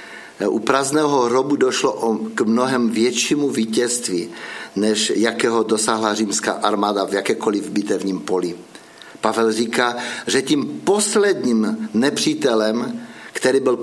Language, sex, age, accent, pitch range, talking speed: Czech, male, 50-69, native, 105-125 Hz, 110 wpm